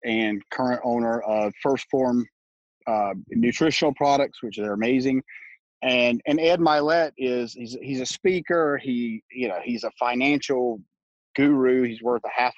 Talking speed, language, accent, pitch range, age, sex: 155 wpm, English, American, 130-180 Hz, 40-59, male